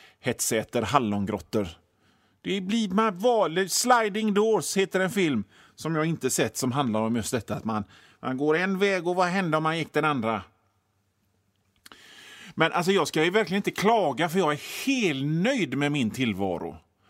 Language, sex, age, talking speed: Swedish, male, 30-49, 175 wpm